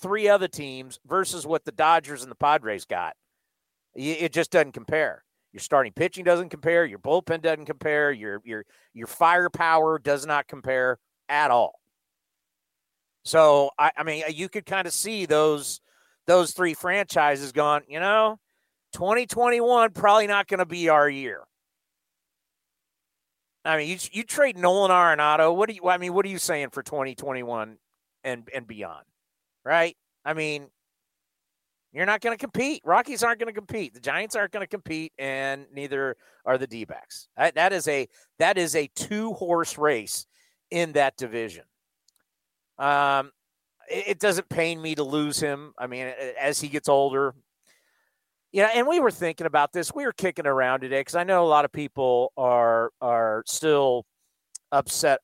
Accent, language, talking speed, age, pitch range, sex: American, English, 170 wpm, 40-59, 135-180 Hz, male